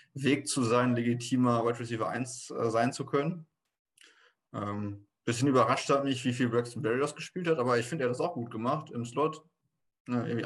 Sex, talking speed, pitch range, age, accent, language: male, 205 wpm, 110-125 Hz, 20-39, German, German